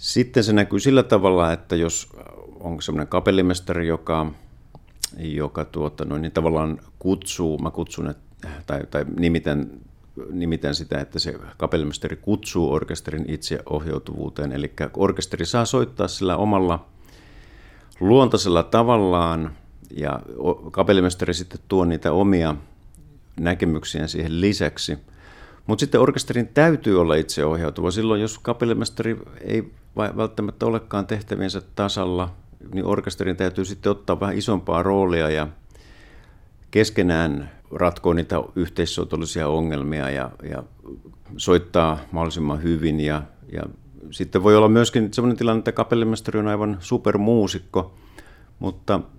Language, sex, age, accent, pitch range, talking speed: Finnish, male, 50-69, native, 80-105 Hz, 115 wpm